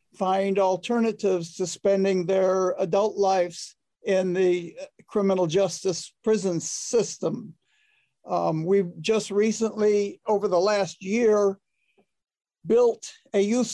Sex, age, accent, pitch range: male, 60-79, American, 180-205 Hz